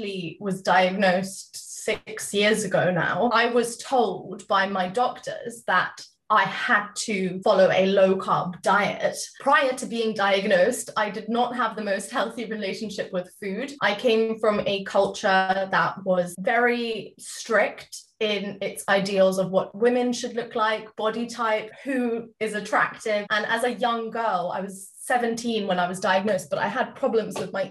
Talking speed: 165 wpm